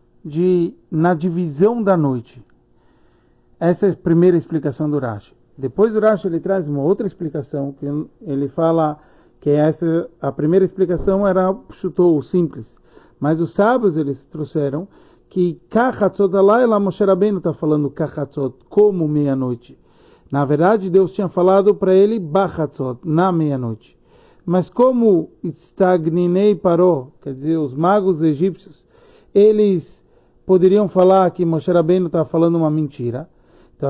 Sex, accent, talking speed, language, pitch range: male, Brazilian, 135 wpm, Portuguese, 150-195 Hz